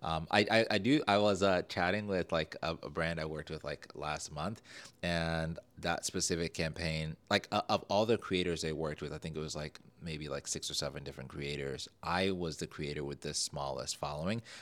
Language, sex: English, male